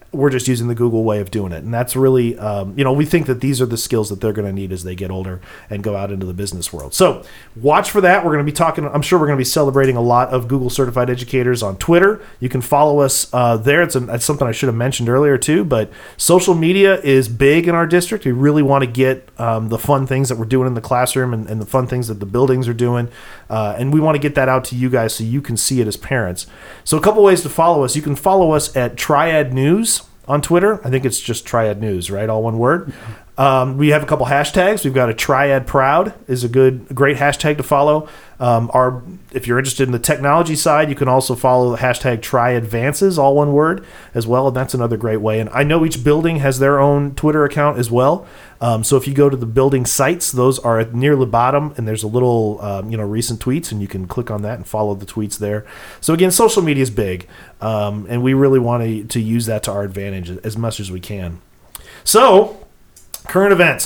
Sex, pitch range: male, 115-145 Hz